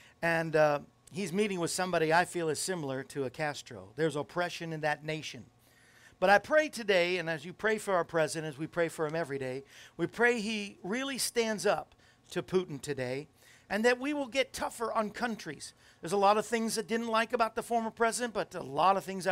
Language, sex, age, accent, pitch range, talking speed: English, male, 50-69, American, 130-200 Hz, 215 wpm